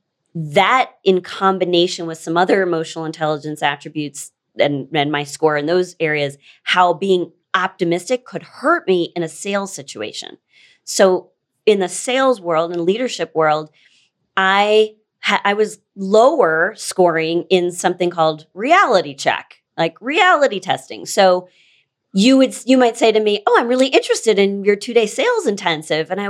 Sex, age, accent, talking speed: female, 30-49, American, 155 wpm